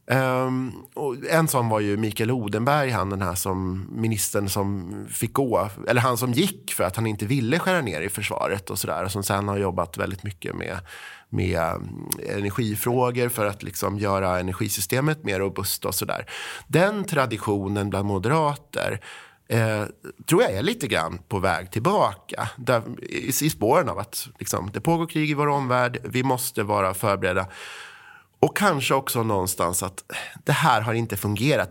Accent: native